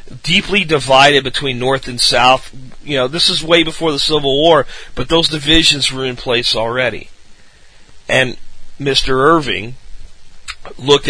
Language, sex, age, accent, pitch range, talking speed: English, male, 40-59, American, 125-170 Hz, 140 wpm